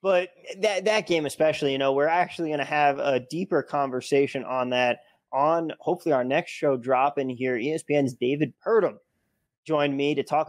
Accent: American